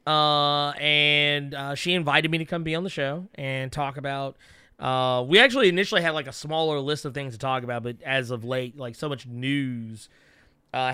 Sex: male